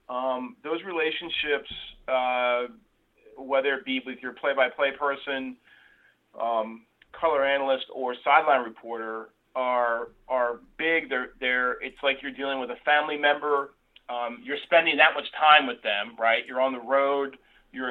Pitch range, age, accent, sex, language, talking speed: 120-145 Hz, 40-59, American, male, English, 145 wpm